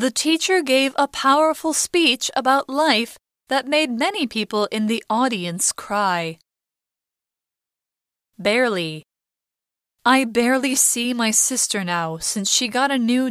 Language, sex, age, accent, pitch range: Chinese, female, 20-39, American, 205-295 Hz